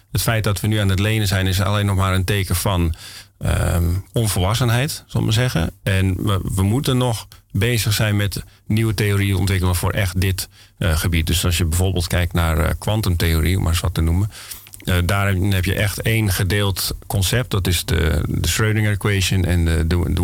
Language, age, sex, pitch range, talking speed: Dutch, 40-59, male, 95-110 Hz, 200 wpm